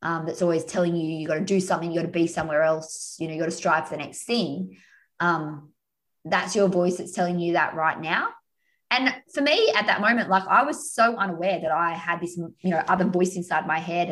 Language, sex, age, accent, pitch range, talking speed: English, female, 20-39, Australian, 165-195 Hz, 245 wpm